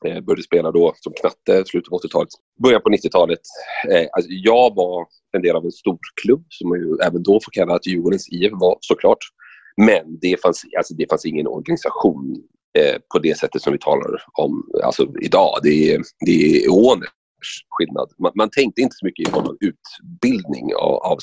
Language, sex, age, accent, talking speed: Swedish, male, 30-49, native, 185 wpm